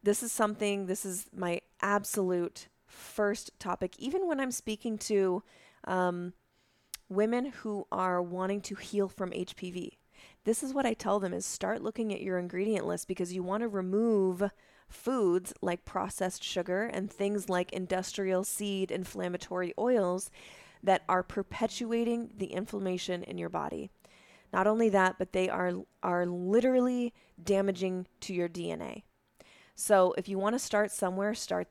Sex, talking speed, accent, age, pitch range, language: female, 150 wpm, American, 20-39, 180-210 Hz, English